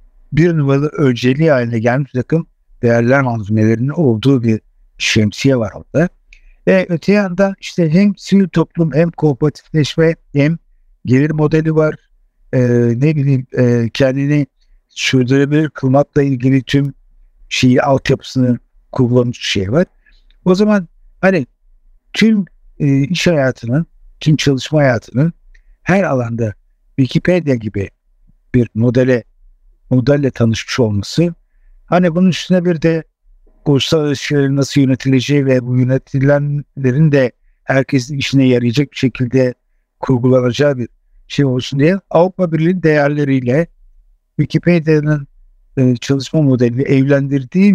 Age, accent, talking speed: 60-79, native, 110 wpm